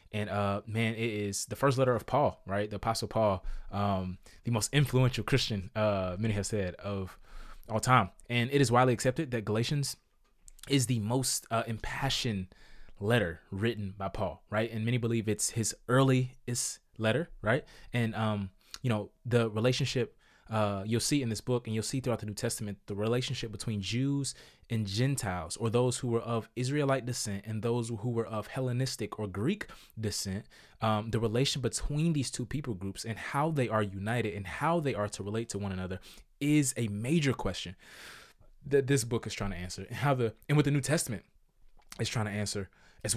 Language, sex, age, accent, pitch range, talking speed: English, male, 20-39, American, 105-130 Hz, 190 wpm